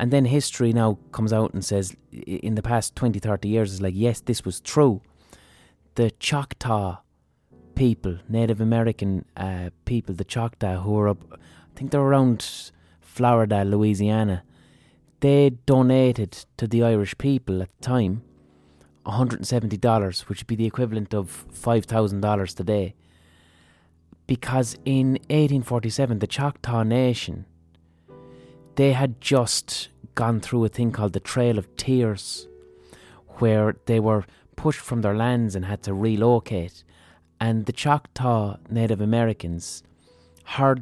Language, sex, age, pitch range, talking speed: English, male, 20-39, 95-120 Hz, 135 wpm